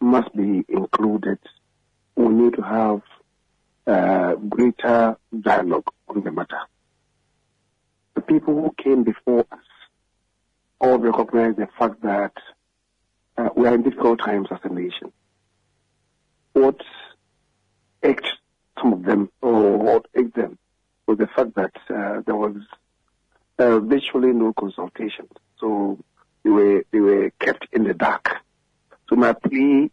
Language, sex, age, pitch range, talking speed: English, male, 50-69, 105-130 Hz, 130 wpm